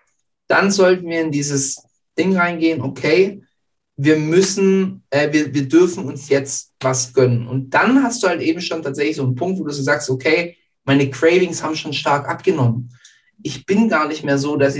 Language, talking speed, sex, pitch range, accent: German, 185 wpm, male, 140-180 Hz, German